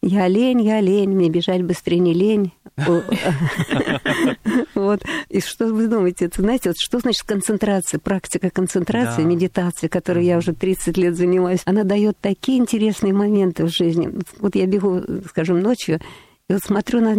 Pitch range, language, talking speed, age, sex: 180-220 Hz, Russian, 145 wpm, 50-69, female